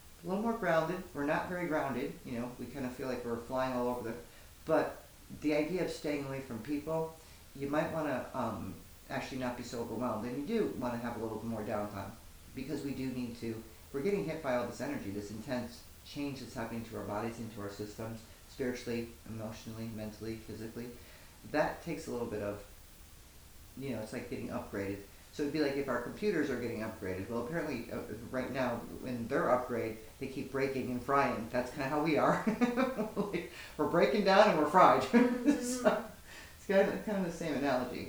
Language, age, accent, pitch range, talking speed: English, 40-59, American, 115-160 Hz, 210 wpm